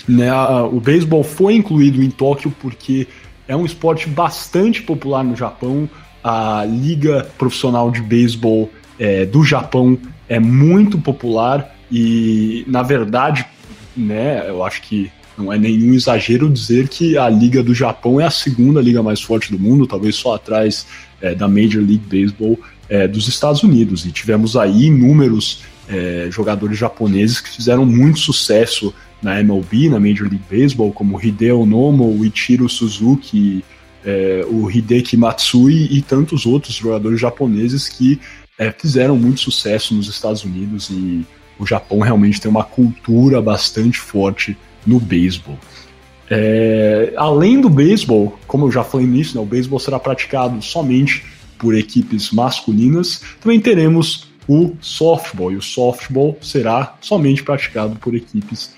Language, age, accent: Portuguese, 20-39, Brazilian